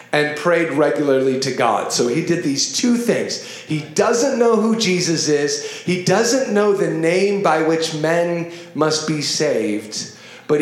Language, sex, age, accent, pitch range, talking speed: English, male, 40-59, American, 160-240 Hz, 165 wpm